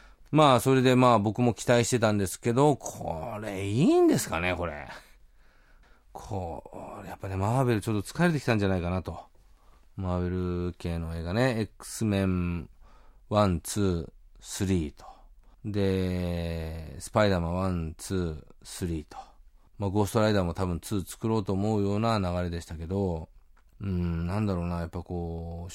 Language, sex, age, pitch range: Japanese, male, 40-59, 90-145 Hz